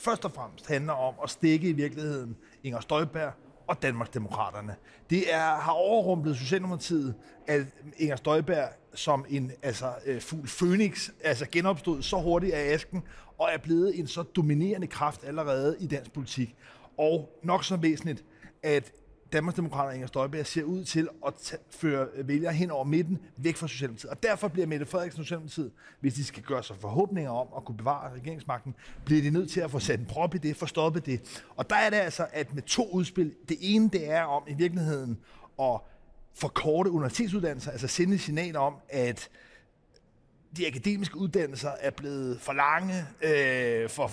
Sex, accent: male, native